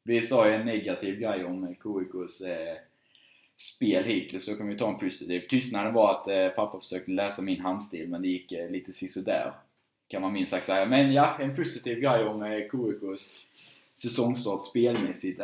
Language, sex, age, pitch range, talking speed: Swedish, male, 10-29, 95-115 Hz, 185 wpm